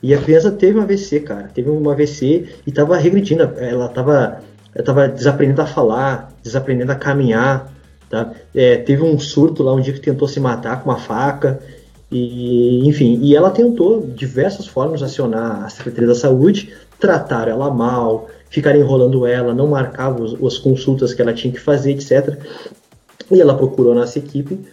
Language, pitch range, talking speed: Portuguese, 130-165 Hz, 175 wpm